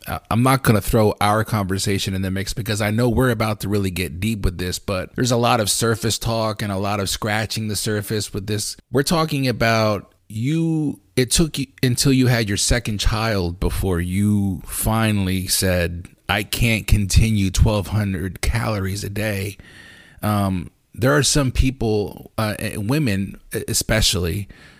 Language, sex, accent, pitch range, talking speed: English, male, American, 95-110 Hz, 170 wpm